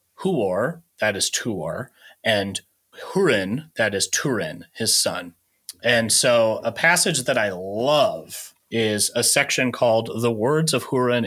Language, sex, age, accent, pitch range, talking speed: English, male, 30-49, American, 110-140 Hz, 140 wpm